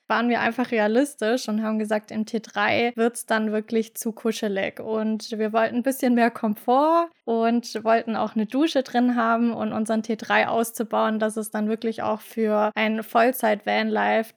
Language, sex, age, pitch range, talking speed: German, female, 20-39, 220-245 Hz, 170 wpm